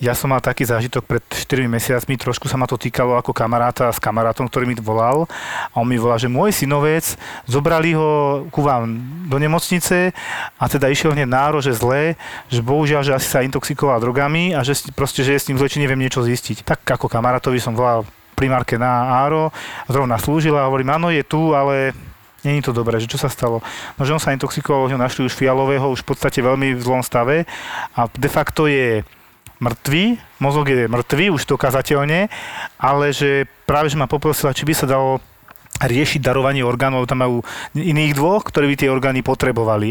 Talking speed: 195 wpm